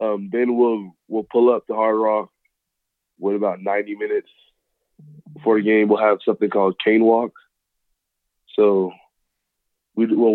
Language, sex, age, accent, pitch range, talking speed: English, male, 20-39, American, 100-115 Hz, 145 wpm